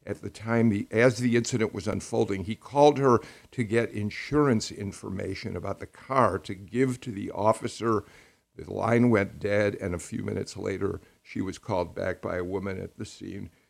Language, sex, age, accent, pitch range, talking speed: English, male, 50-69, American, 90-120 Hz, 185 wpm